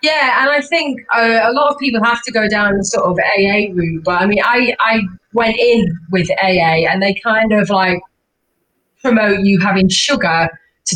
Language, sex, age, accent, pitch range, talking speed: English, female, 30-49, British, 185-240 Hz, 205 wpm